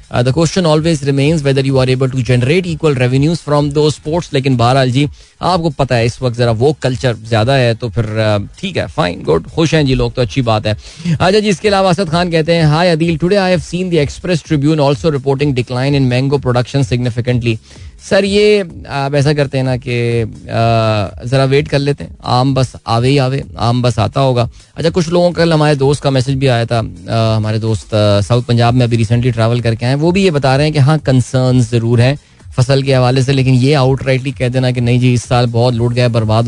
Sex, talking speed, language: male, 240 wpm, Hindi